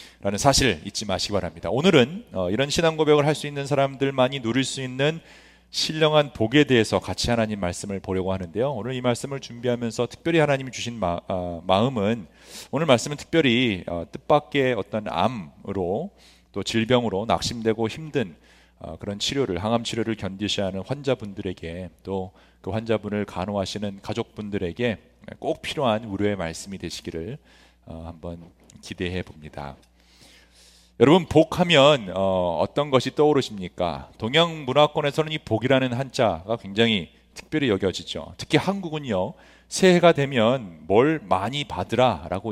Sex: male